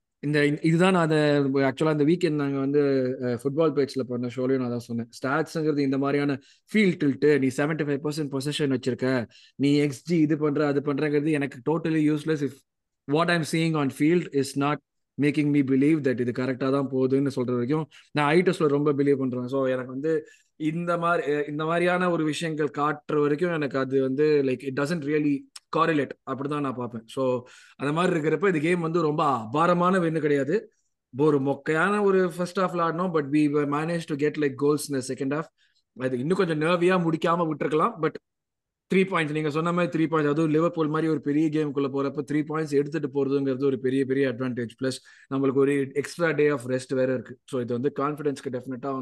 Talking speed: 175 wpm